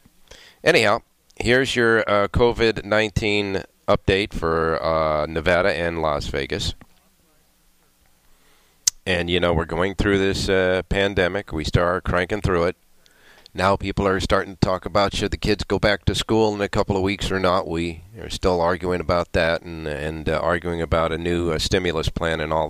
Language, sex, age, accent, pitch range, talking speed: English, male, 40-59, American, 80-100 Hz, 170 wpm